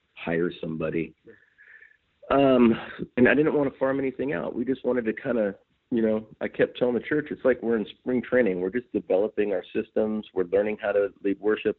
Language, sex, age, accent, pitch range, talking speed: English, male, 40-59, American, 95-120 Hz, 210 wpm